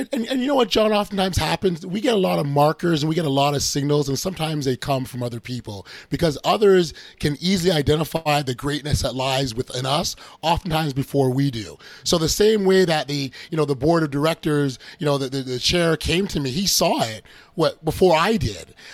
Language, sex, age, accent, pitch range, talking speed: English, male, 30-49, American, 140-175 Hz, 230 wpm